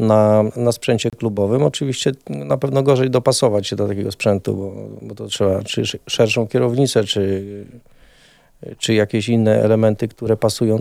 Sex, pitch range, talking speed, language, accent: male, 105-120 Hz, 150 wpm, Polish, native